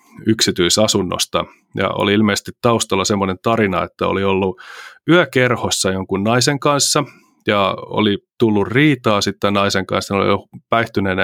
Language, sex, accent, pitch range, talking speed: Finnish, male, native, 100-120 Hz, 130 wpm